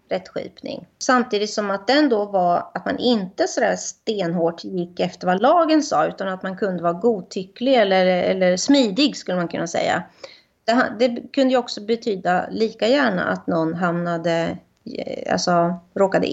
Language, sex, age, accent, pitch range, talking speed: Swedish, female, 30-49, native, 185-240 Hz, 160 wpm